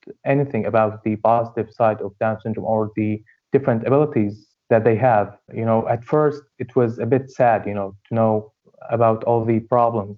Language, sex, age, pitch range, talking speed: English, male, 30-49, 110-130 Hz, 190 wpm